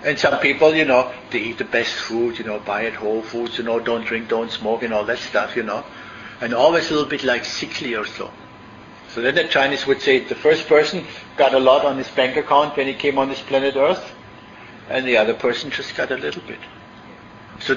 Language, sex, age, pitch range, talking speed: English, male, 60-79, 115-140 Hz, 235 wpm